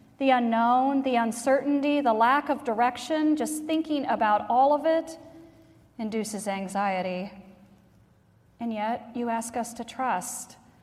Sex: female